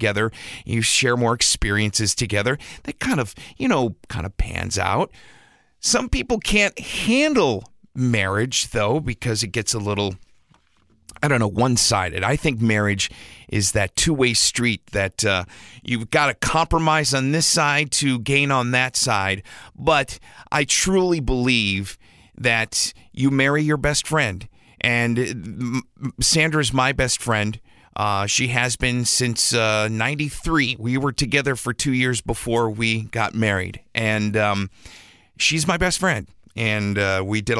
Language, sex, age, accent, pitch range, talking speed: English, male, 40-59, American, 110-145 Hz, 155 wpm